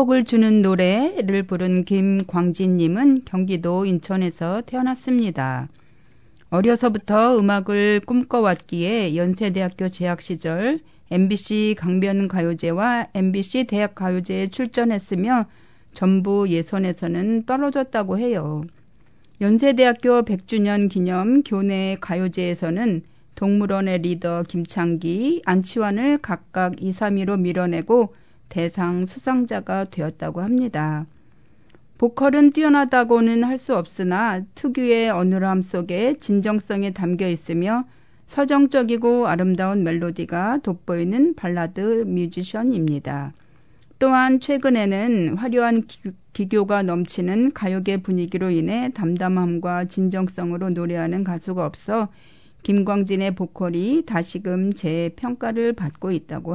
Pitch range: 175-230 Hz